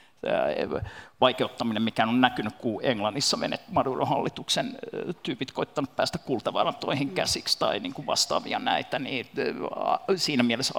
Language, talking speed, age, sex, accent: Finnish, 115 wpm, 50-69, male, native